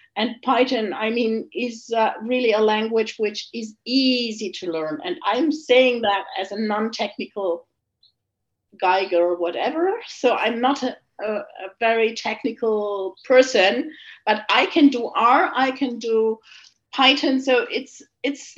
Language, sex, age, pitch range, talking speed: English, female, 50-69, 210-270 Hz, 145 wpm